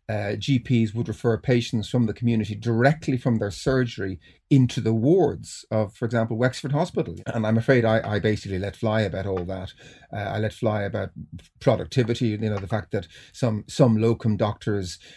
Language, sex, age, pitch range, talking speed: English, male, 40-59, 100-120 Hz, 180 wpm